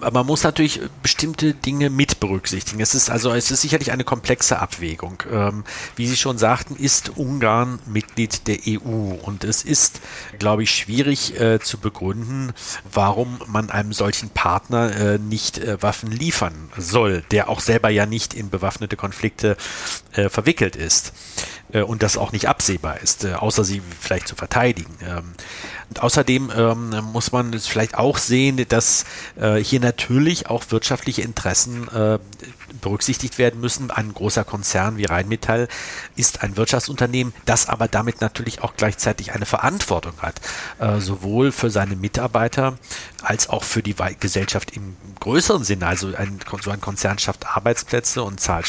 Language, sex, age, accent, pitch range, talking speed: German, male, 50-69, German, 100-120 Hz, 145 wpm